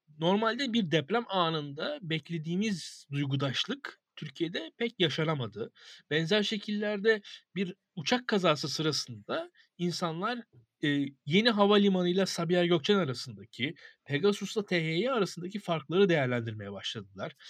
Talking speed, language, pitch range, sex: 95 wpm, Turkish, 145-200 Hz, male